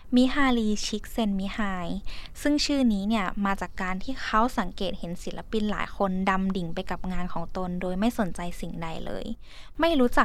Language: Thai